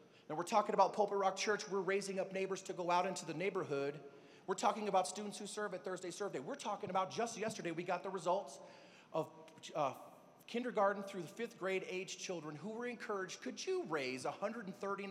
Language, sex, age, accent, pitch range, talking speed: English, male, 30-49, American, 150-200 Hz, 200 wpm